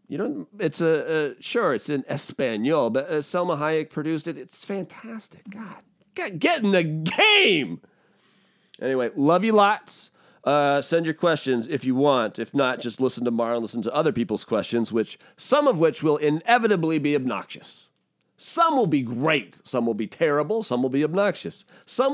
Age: 40-59